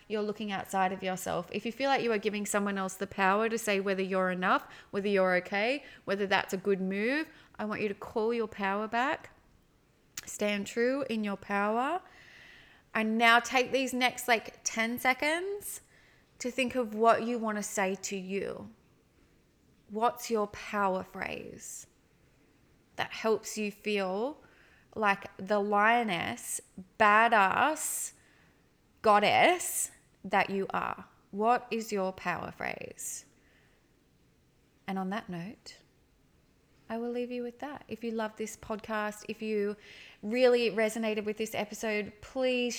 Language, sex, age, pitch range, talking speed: English, female, 20-39, 200-235 Hz, 145 wpm